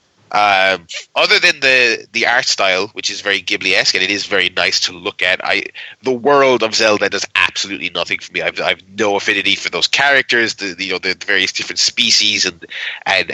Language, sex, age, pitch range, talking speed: English, male, 30-49, 110-130 Hz, 210 wpm